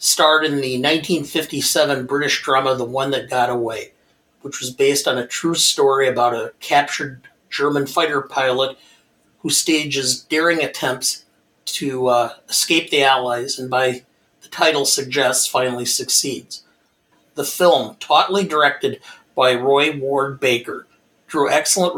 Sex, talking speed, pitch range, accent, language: male, 135 wpm, 130-150 Hz, American, English